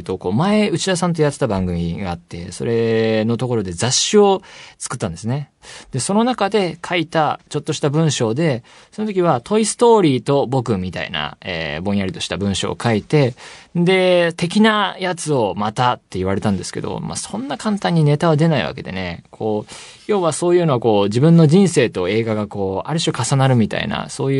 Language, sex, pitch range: Japanese, male, 105-165 Hz